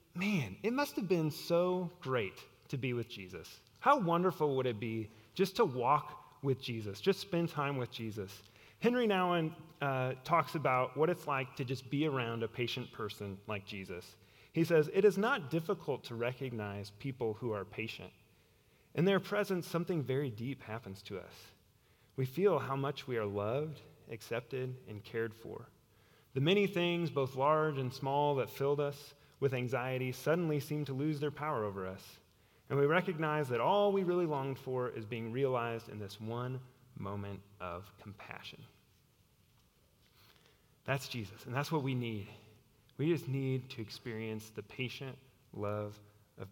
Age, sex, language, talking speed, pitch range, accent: 30-49, male, English, 165 wpm, 115-155 Hz, American